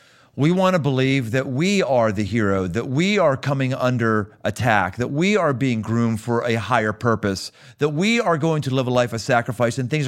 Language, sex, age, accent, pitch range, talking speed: English, male, 40-59, American, 105-135 Hz, 210 wpm